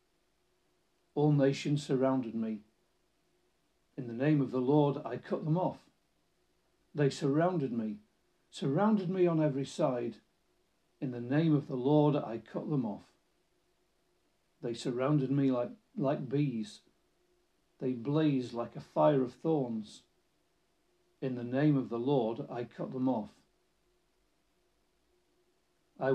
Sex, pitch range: male, 125-150 Hz